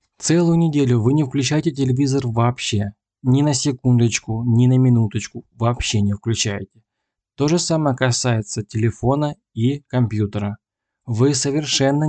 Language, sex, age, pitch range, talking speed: Russian, male, 20-39, 110-130 Hz, 125 wpm